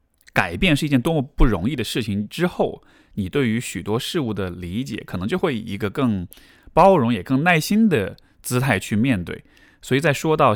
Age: 20-39